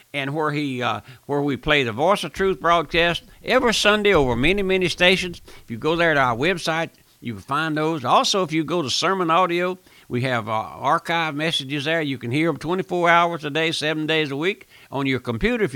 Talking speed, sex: 220 wpm, male